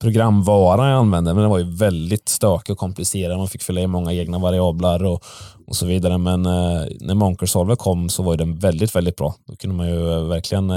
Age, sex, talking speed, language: 20-39, male, 215 wpm, English